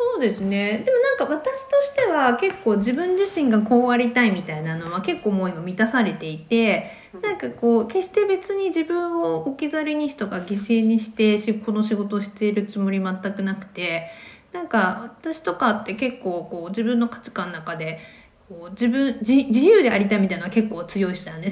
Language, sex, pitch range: Japanese, female, 190-260 Hz